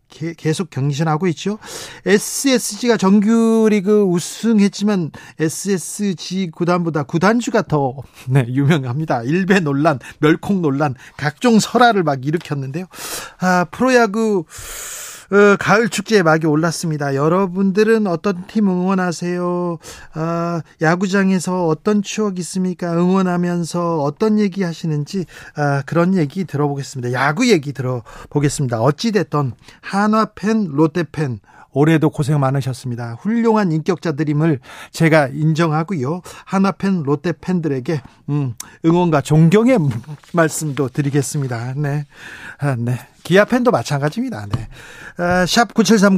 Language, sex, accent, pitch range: Korean, male, native, 145-195 Hz